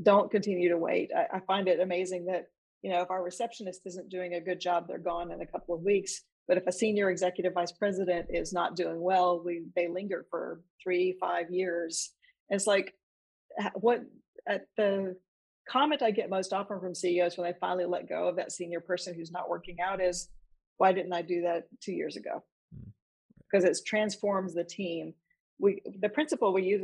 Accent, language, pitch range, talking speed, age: American, English, 175-200 Hz, 200 wpm, 40-59